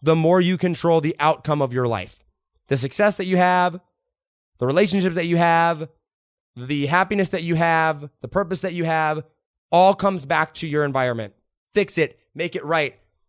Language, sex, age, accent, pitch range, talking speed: English, male, 20-39, American, 135-180 Hz, 180 wpm